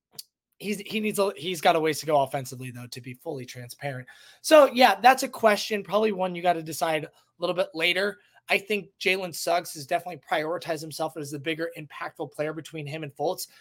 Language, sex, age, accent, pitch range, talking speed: English, male, 20-39, American, 145-195 Hz, 210 wpm